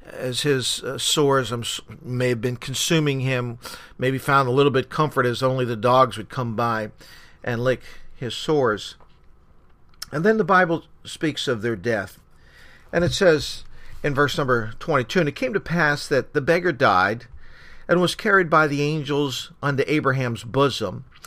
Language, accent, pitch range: English, American, 125-160 Hz